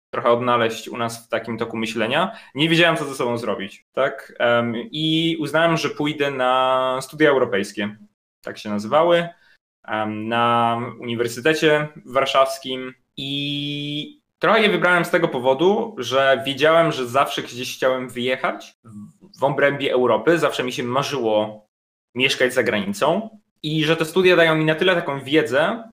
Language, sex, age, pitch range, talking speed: Polish, male, 20-39, 120-155 Hz, 145 wpm